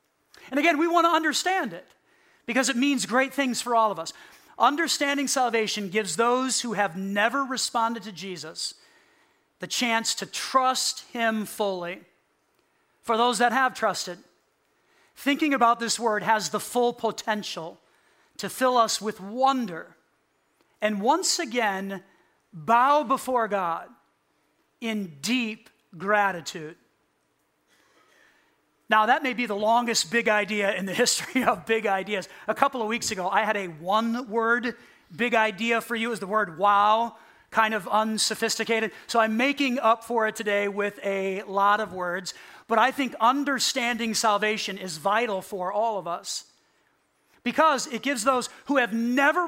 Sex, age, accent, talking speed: male, 40-59, American, 150 wpm